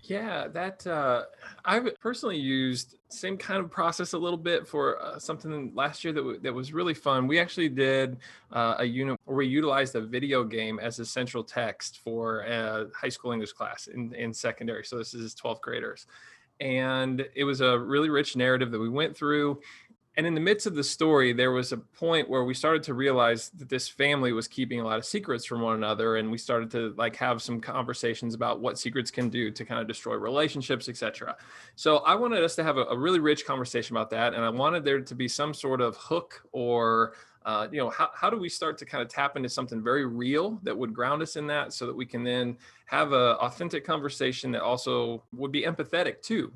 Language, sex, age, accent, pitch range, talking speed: English, male, 20-39, American, 120-150 Hz, 220 wpm